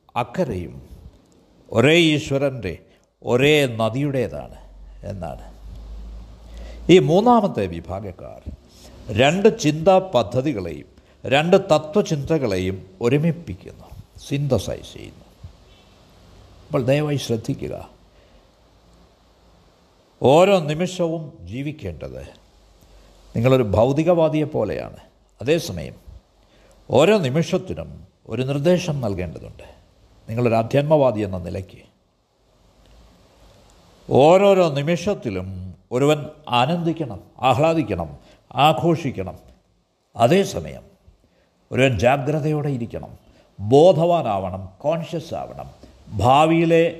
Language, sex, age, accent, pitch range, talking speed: Malayalam, male, 60-79, native, 90-150 Hz, 65 wpm